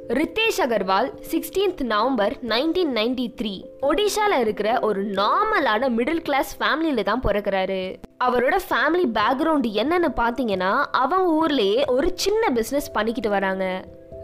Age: 20-39